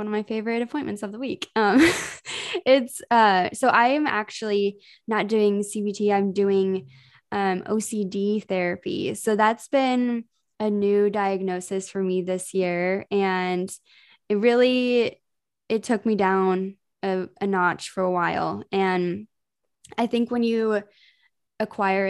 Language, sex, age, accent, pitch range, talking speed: English, female, 10-29, American, 190-215 Hz, 140 wpm